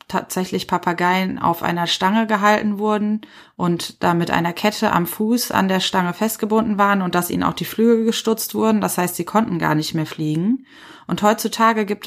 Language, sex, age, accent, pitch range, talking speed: German, female, 20-39, German, 175-210 Hz, 190 wpm